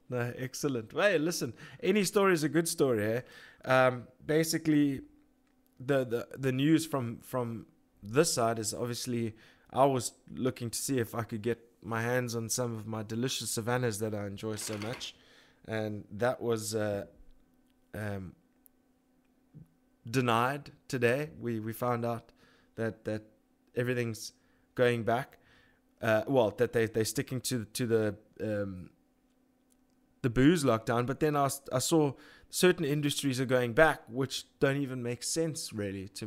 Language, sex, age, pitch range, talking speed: English, male, 20-39, 110-145 Hz, 150 wpm